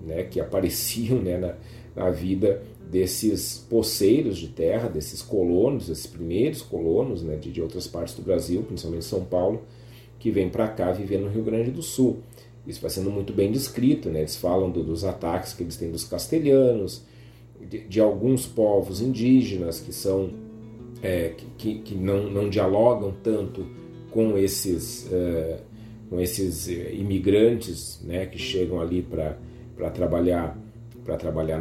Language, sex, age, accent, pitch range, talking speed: Portuguese, male, 40-59, Brazilian, 90-115 Hz, 155 wpm